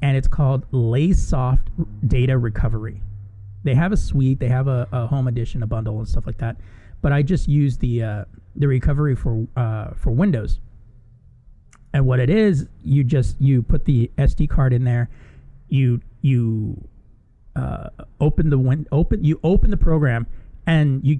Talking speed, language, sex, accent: 170 wpm, English, male, American